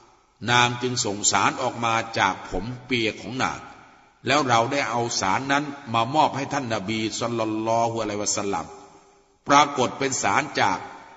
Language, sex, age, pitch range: Thai, male, 60-79, 115-145 Hz